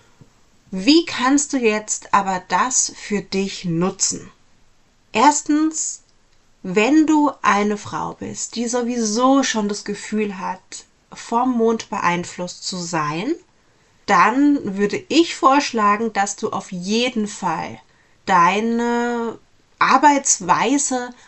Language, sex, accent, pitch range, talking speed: German, female, German, 195-255 Hz, 105 wpm